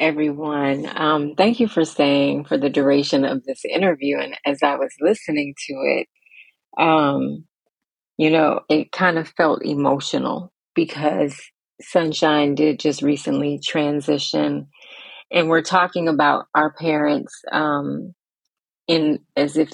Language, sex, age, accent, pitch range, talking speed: English, female, 30-49, American, 140-160 Hz, 130 wpm